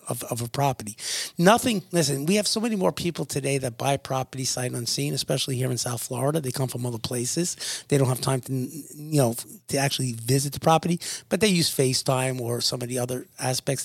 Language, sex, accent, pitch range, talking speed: English, male, American, 125-150 Hz, 215 wpm